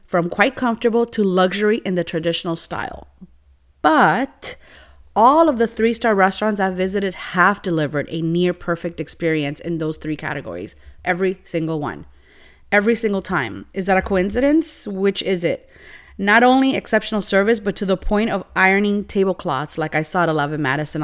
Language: English